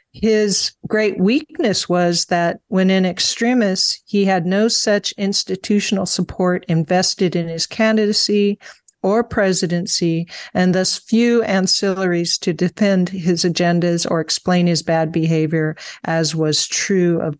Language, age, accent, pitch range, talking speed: English, 50-69, American, 170-195 Hz, 130 wpm